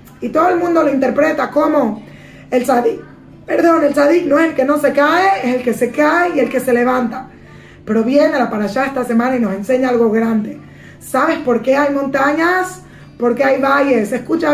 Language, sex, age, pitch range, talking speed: Spanish, female, 20-39, 250-315 Hz, 200 wpm